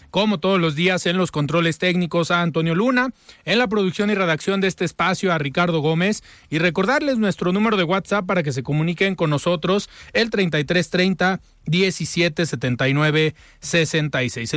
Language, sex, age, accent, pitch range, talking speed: Spanish, male, 40-59, Mexican, 160-205 Hz, 150 wpm